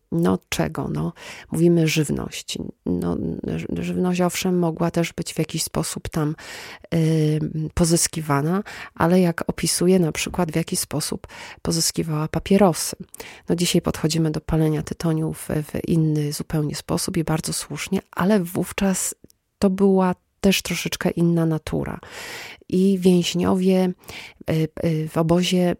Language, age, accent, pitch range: Polish, 30-49, native, 155-180 Hz